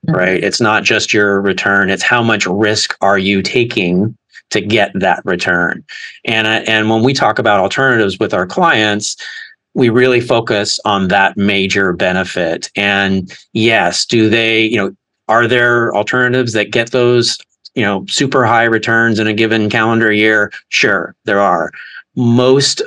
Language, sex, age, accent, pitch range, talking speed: English, male, 30-49, American, 100-120 Hz, 160 wpm